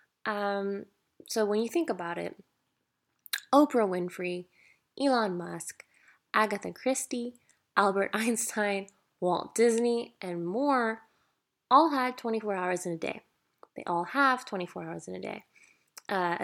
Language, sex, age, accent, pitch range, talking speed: English, female, 20-39, American, 175-210 Hz, 130 wpm